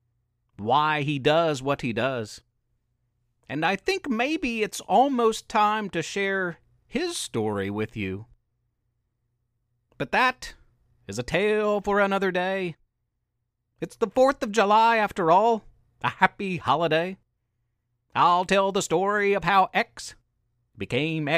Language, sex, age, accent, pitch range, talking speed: English, male, 40-59, American, 120-195 Hz, 125 wpm